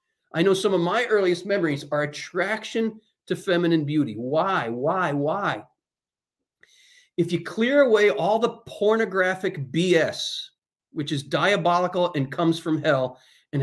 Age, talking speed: 40-59, 135 wpm